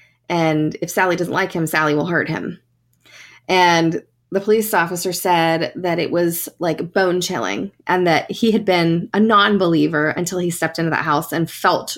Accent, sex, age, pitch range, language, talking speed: American, female, 20-39, 165-210 Hz, English, 180 wpm